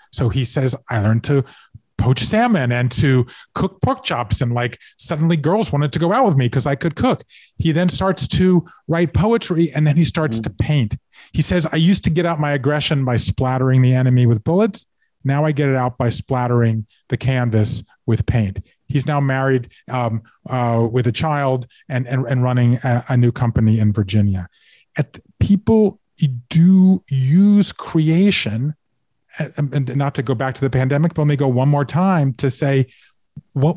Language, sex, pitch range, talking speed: English, male, 125-170 Hz, 185 wpm